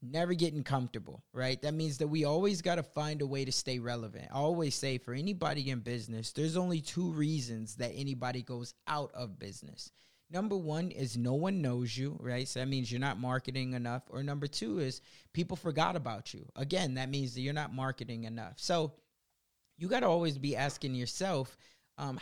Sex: male